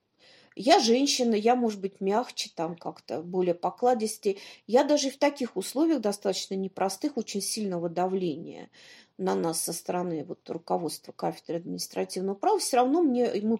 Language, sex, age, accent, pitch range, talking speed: Russian, female, 40-59, native, 205-260 Hz, 145 wpm